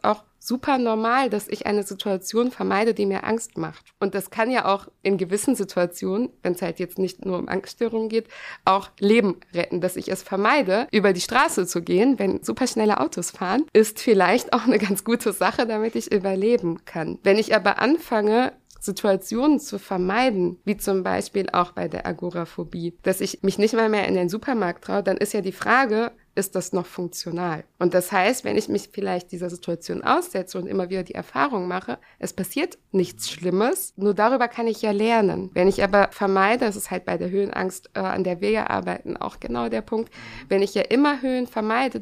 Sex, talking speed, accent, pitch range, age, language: female, 200 wpm, German, 185-225 Hz, 60-79, German